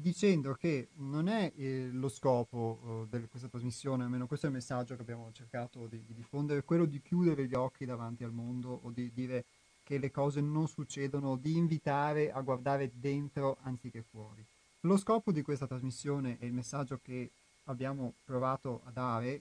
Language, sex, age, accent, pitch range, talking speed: Italian, male, 30-49, native, 125-150 Hz, 180 wpm